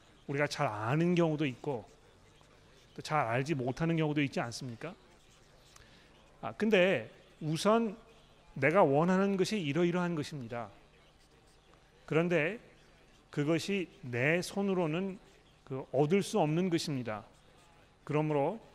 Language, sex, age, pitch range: Korean, male, 40-59, 135-175 Hz